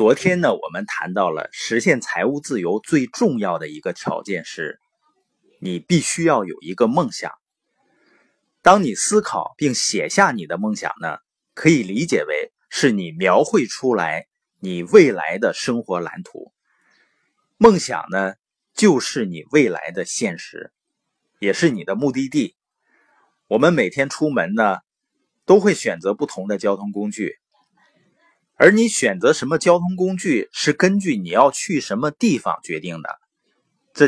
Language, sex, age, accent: Chinese, male, 30-49, native